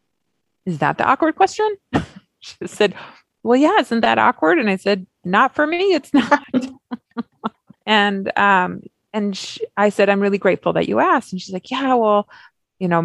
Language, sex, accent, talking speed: English, female, American, 175 wpm